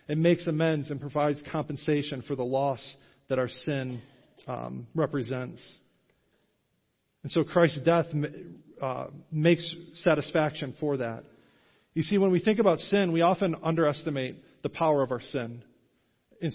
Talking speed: 140 wpm